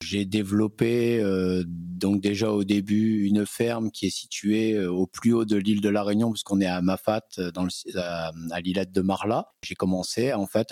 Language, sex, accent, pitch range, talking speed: French, male, French, 90-105 Hz, 195 wpm